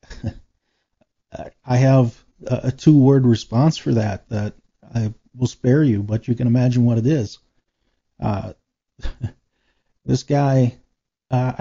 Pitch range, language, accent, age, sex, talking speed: 110-130 Hz, English, American, 40-59, male, 125 wpm